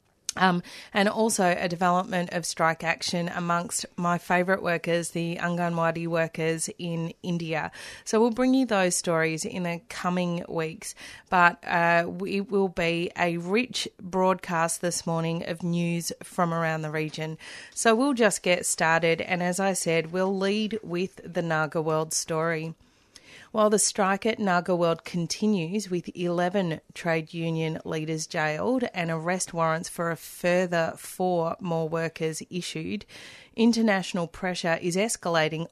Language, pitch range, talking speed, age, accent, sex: English, 165-185 Hz, 145 wpm, 30-49, Australian, female